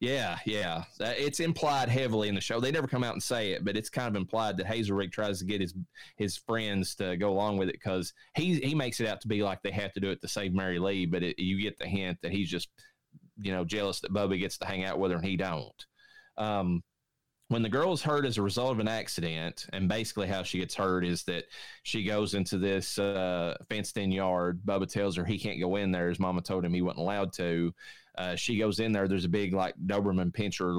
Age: 20-39